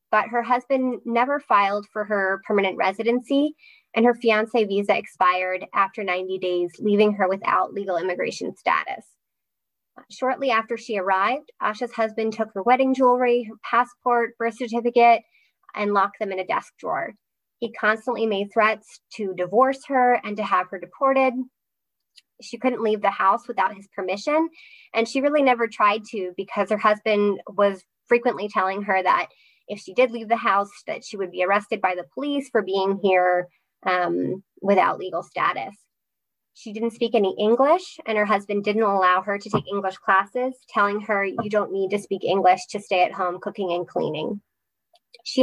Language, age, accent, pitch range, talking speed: English, 20-39, American, 195-240 Hz, 170 wpm